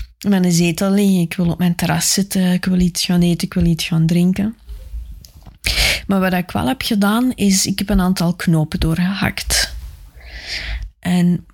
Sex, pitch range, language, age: female, 160-185 Hz, Dutch, 20-39